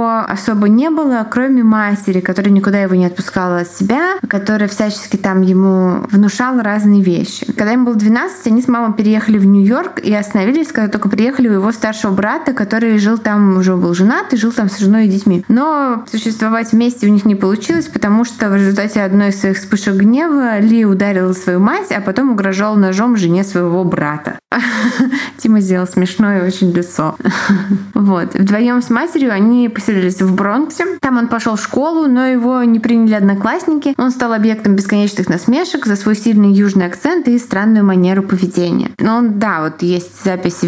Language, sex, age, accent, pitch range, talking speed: Russian, female, 20-39, native, 190-230 Hz, 175 wpm